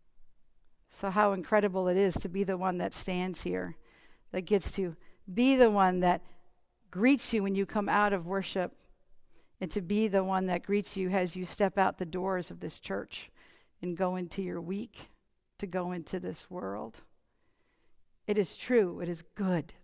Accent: American